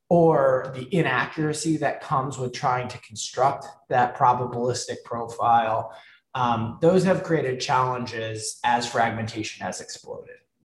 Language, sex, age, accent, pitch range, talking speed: English, male, 20-39, American, 120-160 Hz, 120 wpm